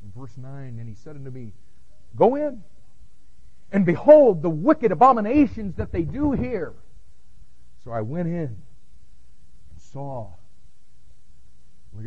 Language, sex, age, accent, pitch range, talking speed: English, male, 50-69, American, 100-155 Hz, 130 wpm